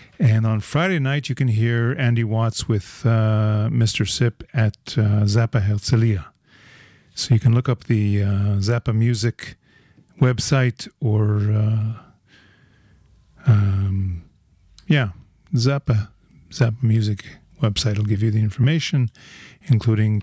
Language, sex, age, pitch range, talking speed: English, male, 50-69, 105-125 Hz, 120 wpm